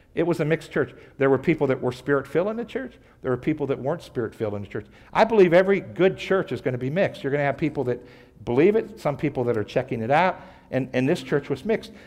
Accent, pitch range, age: American, 125-170 Hz, 60-79